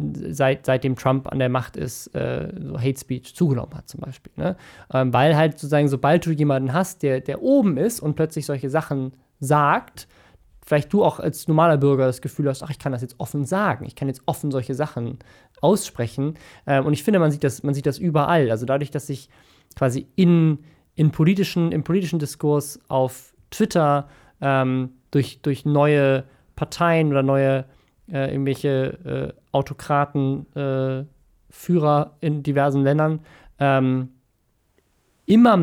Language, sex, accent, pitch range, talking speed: German, male, German, 135-165 Hz, 155 wpm